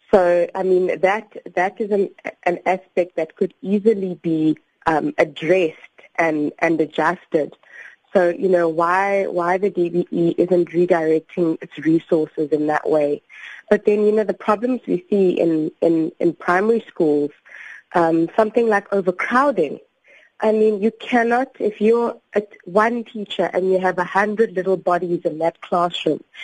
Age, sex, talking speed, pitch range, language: 20-39, female, 150 wpm, 165-200 Hz, English